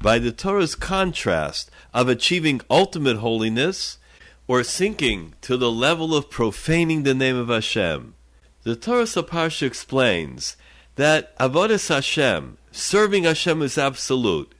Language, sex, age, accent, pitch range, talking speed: English, male, 50-69, American, 125-165 Hz, 125 wpm